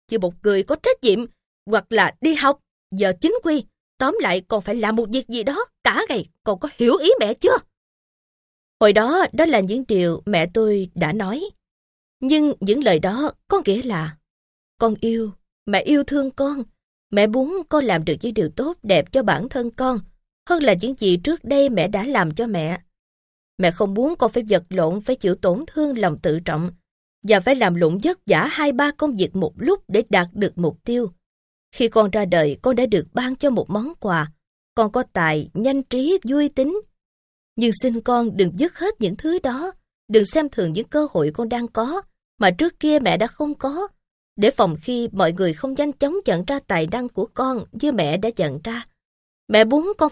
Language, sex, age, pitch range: Vietnamese, female, 20-39, 195-290 Hz